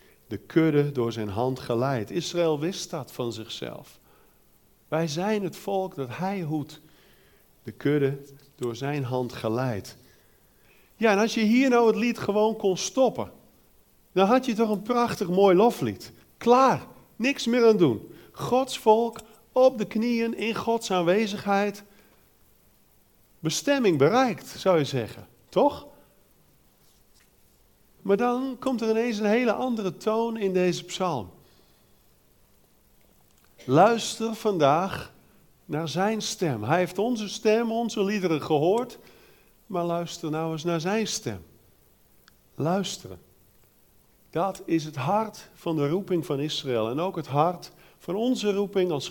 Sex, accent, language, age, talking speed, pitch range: male, Dutch, Dutch, 50-69, 135 wpm, 140-215 Hz